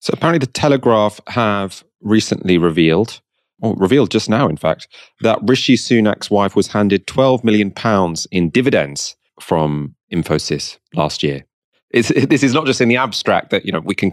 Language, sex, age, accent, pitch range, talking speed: English, male, 30-49, British, 90-120 Hz, 175 wpm